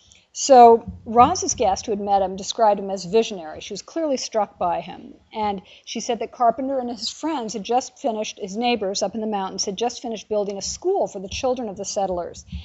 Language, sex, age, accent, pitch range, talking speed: English, female, 50-69, American, 195-250 Hz, 220 wpm